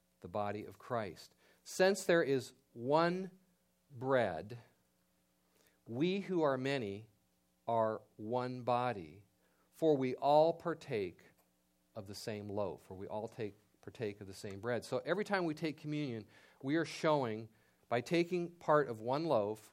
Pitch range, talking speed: 105-145 Hz, 145 wpm